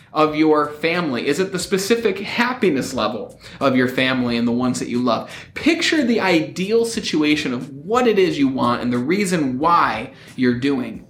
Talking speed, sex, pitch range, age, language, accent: 185 wpm, male, 155-230 Hz, 30-49, English, American